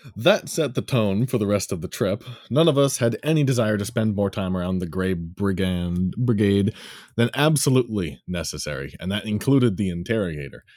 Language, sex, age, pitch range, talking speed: English, male, 30-49, 95-150 Hz, 185 wpm